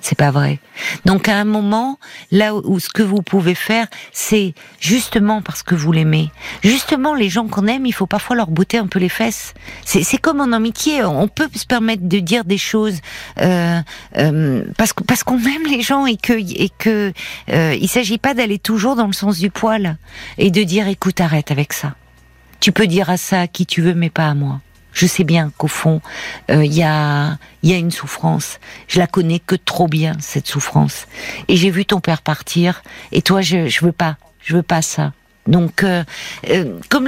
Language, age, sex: French, 50-69, female